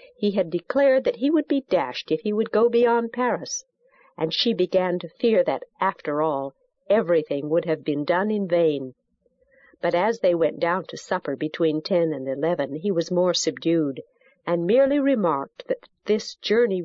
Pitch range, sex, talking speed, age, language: 170-260 Hz, female, 180 wpm, 50-69, English